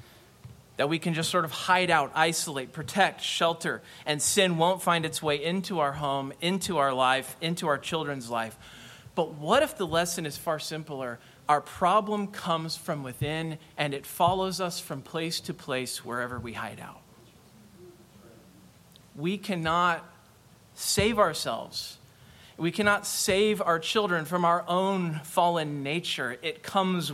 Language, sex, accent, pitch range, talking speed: English, male, American, 135-175 Hz, 150 wpm